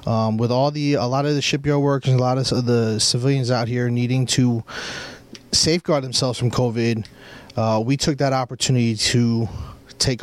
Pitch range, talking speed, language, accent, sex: 115-140 Hz, 180 wpm, English, American, male